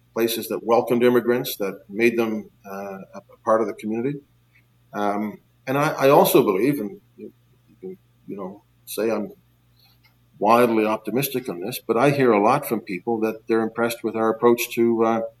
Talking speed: 175 wpm